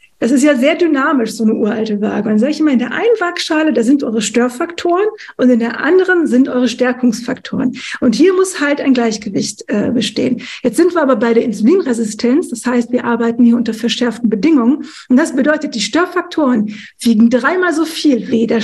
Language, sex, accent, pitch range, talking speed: German, female, German, 240-310 Hz, 205 wpm